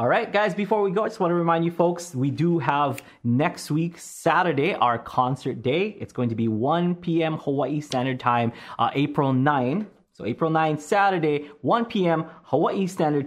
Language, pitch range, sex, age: English, 110-155 Hz, male, 20-39